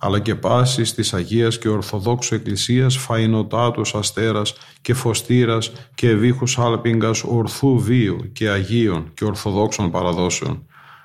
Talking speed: 120 wpm